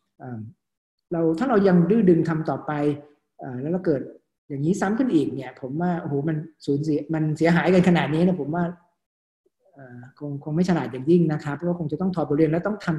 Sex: male